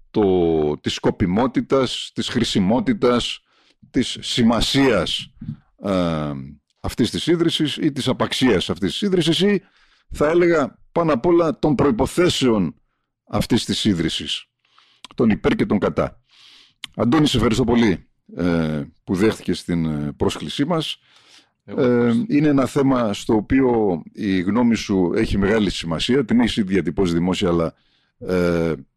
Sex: male